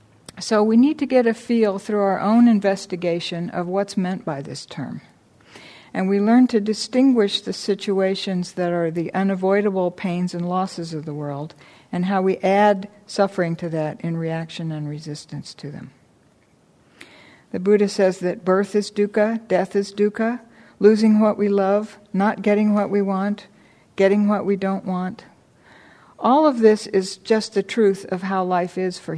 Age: 60-79